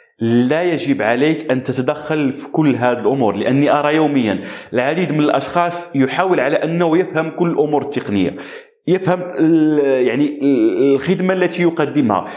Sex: male